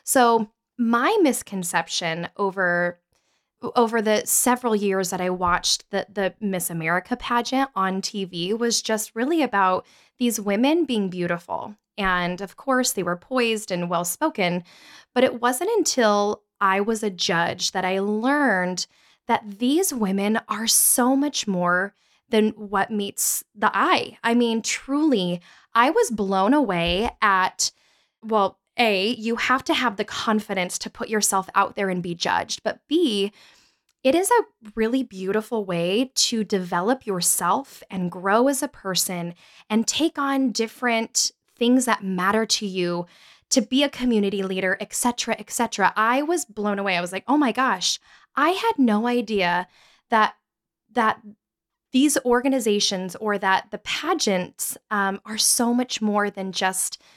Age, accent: 10-29, American